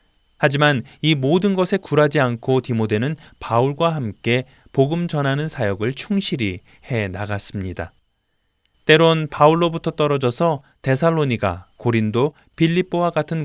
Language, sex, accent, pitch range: Korean, male, native, 110-160 Hz